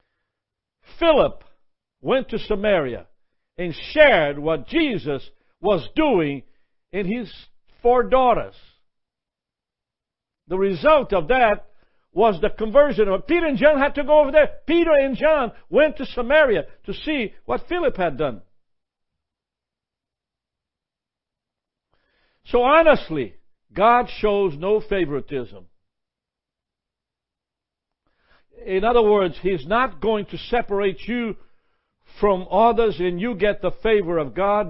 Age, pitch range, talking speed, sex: 60-79, 185-255 Hz, 115 wpm, male